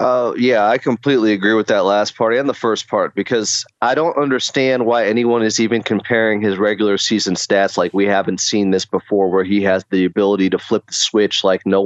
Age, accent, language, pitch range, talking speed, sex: 30-49, American, English, 100-120 Hz, 220 wpm, male